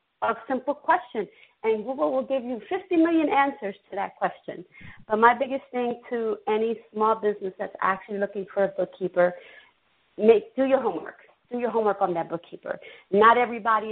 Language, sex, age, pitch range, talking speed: English, female, 40-59, 180-225 Hz, 175 wpm